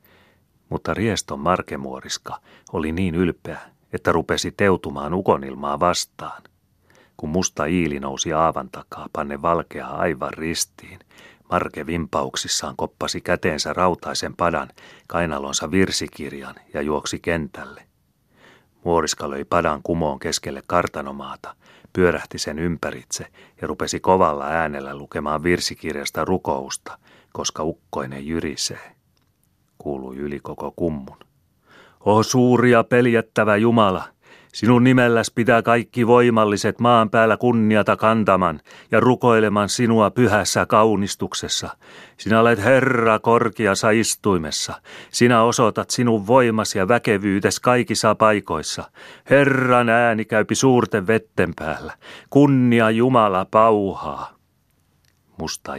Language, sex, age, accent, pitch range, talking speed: Finnish, male, 30-49, native, 80-115 Hz, 105 wpm